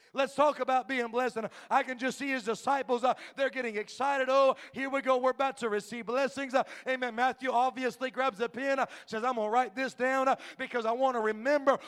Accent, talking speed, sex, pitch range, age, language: American, 230 wpm, male, 230-270 Hz, 40-59, English